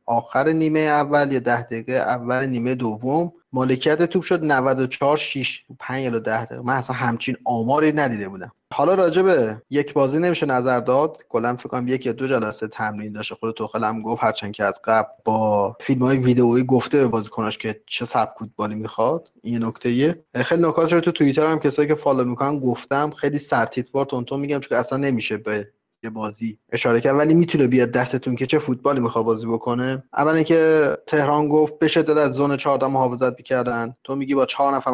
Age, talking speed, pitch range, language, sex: 30-49, 190 wpm, 120-145 Hz, Persian, male